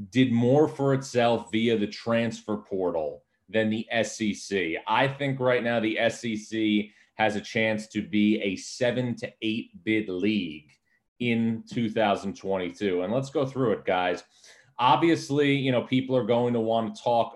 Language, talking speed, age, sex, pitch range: English, 160 wpm, 30-49, male, 105-125 Hz